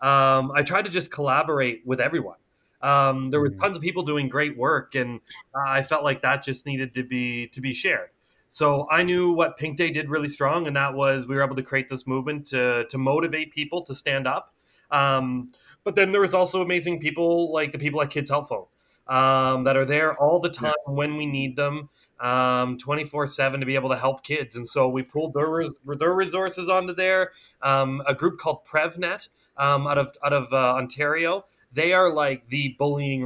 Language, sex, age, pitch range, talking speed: English, male, 20-39, 130-155 Hz, 210 wpm